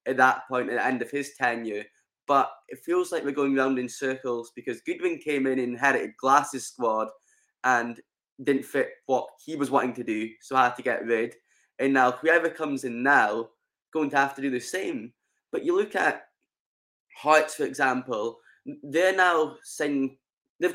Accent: British